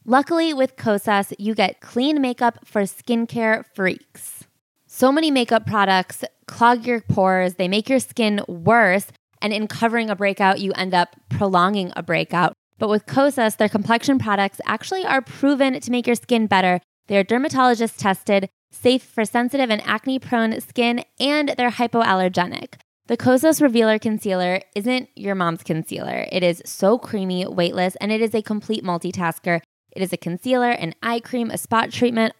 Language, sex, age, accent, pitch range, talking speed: English, female, 20-39, American, 190-240 Hz, 165 wpm